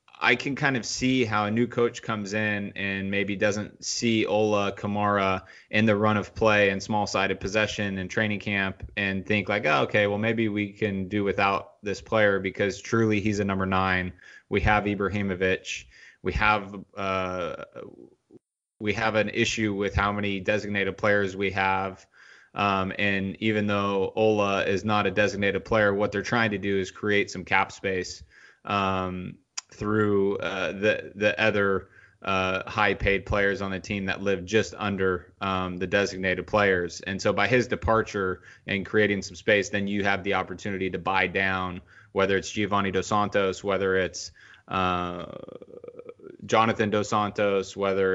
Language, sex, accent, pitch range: English, male, American, 95-105 Hz